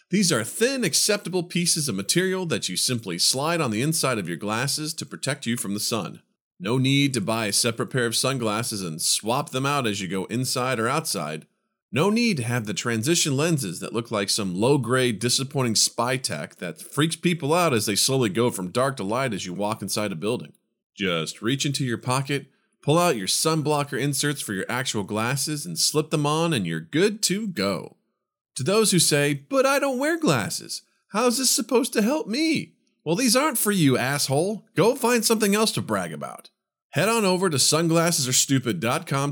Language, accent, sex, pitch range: English, American, male, 115-175 Hz